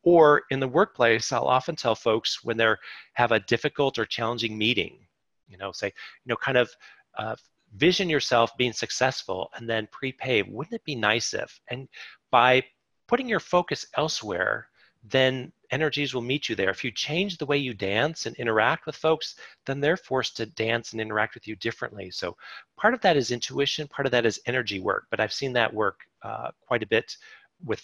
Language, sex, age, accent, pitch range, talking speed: English, male, 40-59, American, 115-140 Hz, 195 wpm